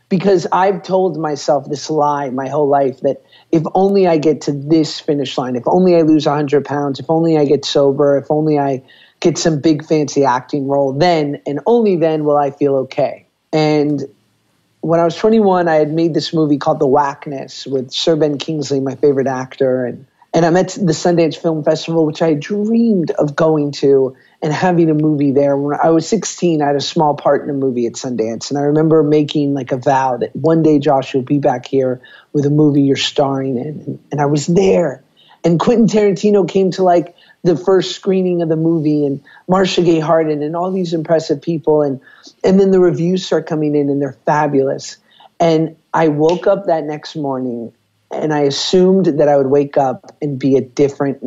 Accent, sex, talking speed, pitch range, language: American, male, 205 wpm, 140-170 Hz, English